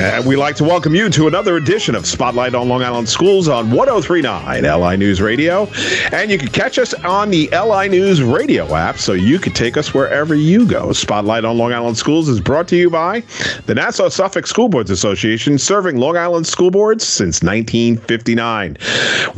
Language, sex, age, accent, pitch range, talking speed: English, male, 40-59, American, 115-170 Hz, 190 wpm